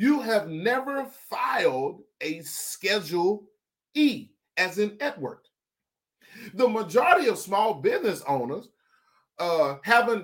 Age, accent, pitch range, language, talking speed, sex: 40-59, American, 150-225 Hz, English, 105 wpm, male